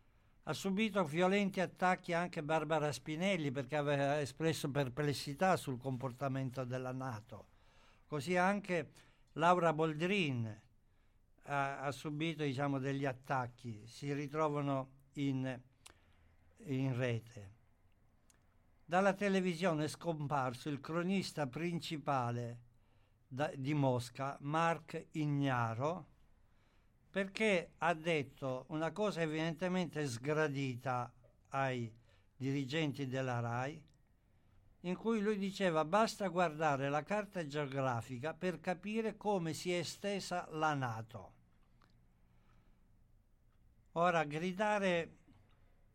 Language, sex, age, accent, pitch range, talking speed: Italian, male, 60-79, native, 120-165 Hz, 90 wpm